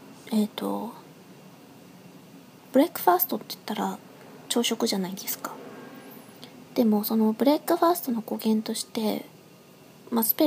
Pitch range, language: 200-255 Hz, Japanese